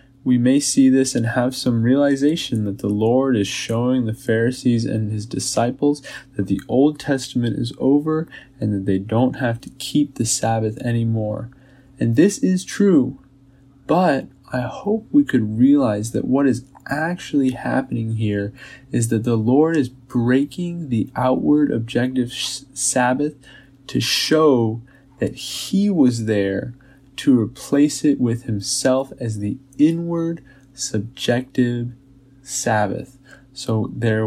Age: 20-39